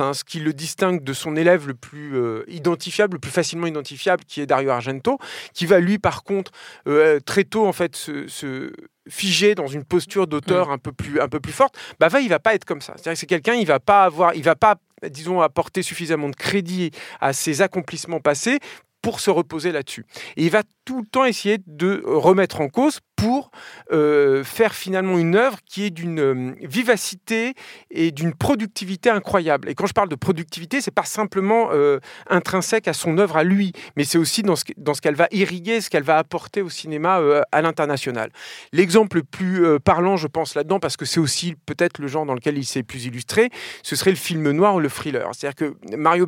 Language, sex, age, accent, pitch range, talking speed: French, male, 40-59, French, 150-200 Hz, 220 wpm